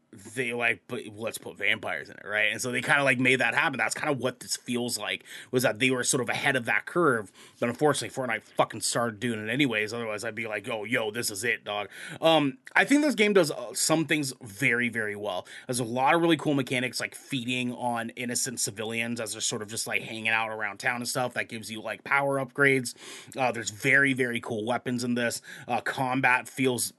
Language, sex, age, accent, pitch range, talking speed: English, male, 30-49, American, 115-135 Hz, 235 wpm